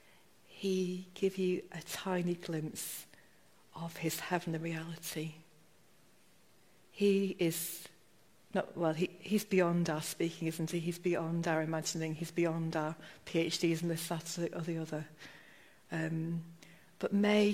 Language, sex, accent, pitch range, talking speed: English, female, British, 160-185 Hz, 130 wpm